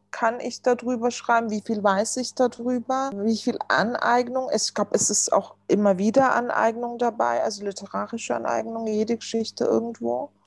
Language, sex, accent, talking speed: German, female, German, 155 wpm